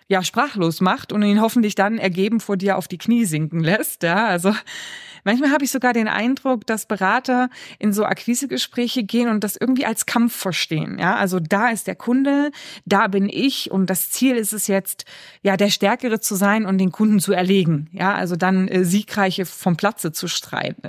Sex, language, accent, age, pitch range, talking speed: female, German, German, 20-39, 185-225 Hz, 200 wpm